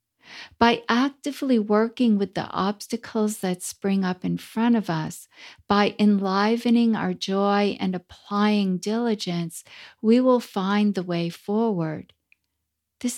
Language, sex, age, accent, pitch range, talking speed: English, female, 50-69, American, 180-220 Hz, 125 wpm